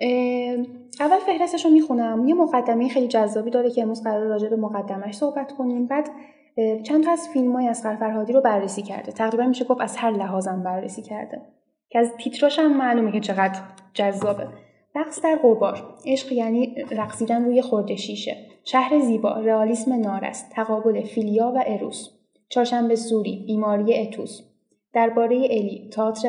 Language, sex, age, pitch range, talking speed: Persian, female, 10-29, 205-250 Hz, 150 wpm